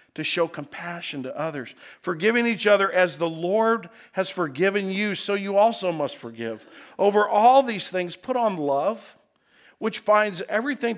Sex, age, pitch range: male, 50-69, 160-225 Hz